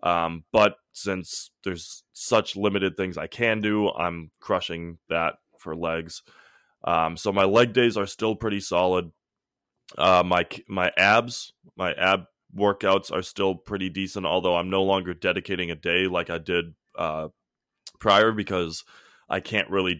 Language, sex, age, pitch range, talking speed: English, male, 20-39, 85-100 Hz, 155 wpm